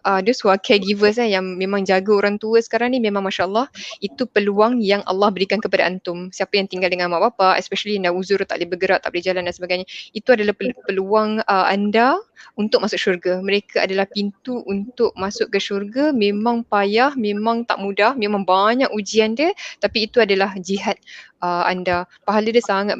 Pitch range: 195-230 Hz